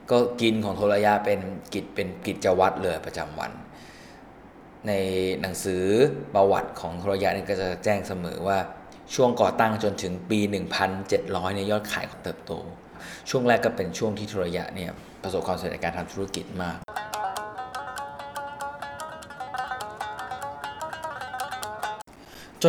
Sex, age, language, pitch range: male, 20-39, Thai, 90-105 Hz